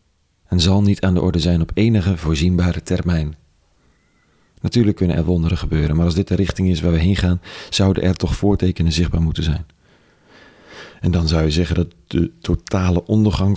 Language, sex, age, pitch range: Dutch, male, 40-59, 80-95 Hz